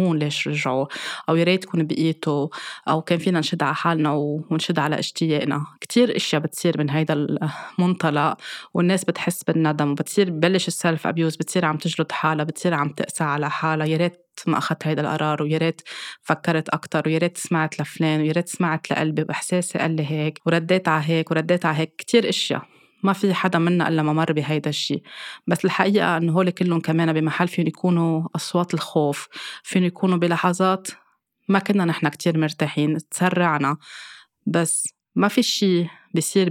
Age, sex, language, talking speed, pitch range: 20-39, female, Arabic, 165 wpm, 155-180 Hz